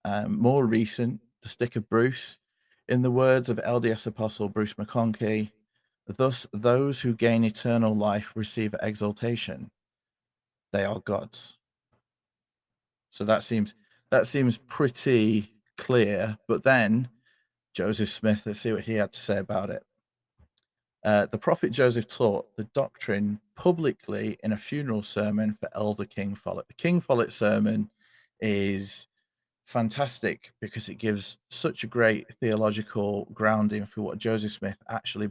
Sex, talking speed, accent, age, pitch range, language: male, 135 wpm, British, 40-59, 105-120 Hz, English